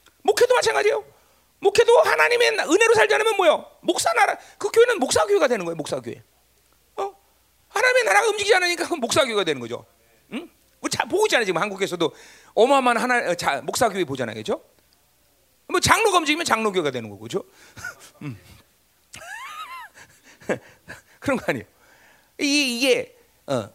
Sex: male